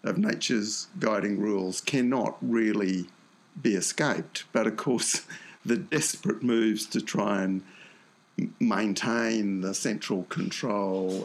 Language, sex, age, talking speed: English, male, 50-69, 110 wpm